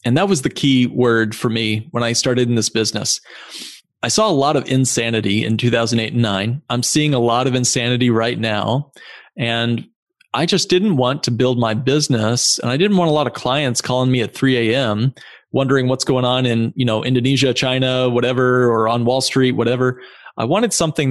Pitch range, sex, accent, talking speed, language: 115-140 Hz, male, American, 215 wpm, English